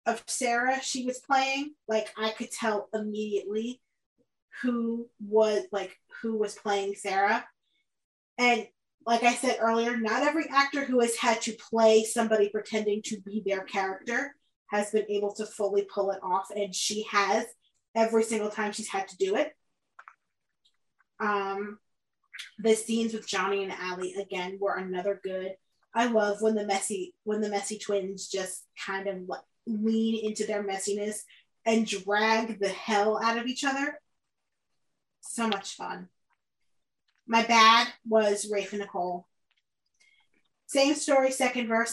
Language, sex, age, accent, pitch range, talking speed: English, female, 20-39, American, 205-245 Hz, 150 wpm